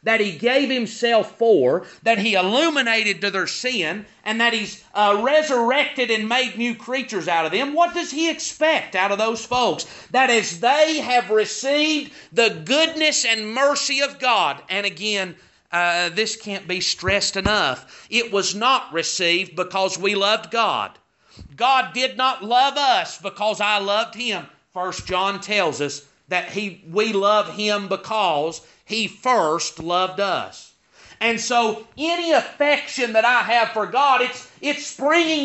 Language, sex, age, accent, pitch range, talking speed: English, male, 40-59, American, 195-265 Hz, 155 wpm